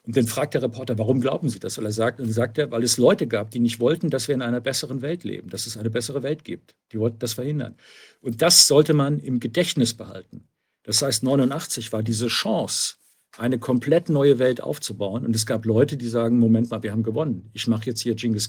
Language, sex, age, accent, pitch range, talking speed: German, male, 50-69, German, 115-145 Hz, 235 wpm